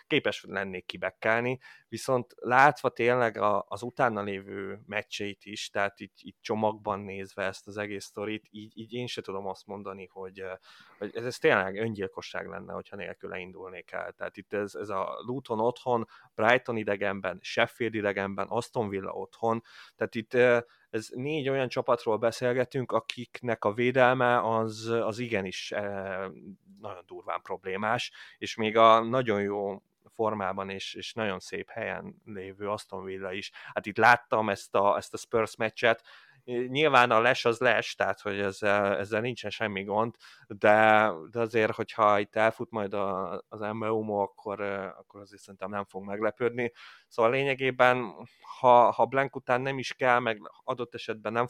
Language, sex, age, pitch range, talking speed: Hungarian, male, 30-49, 100-120 Hz, 155 wpm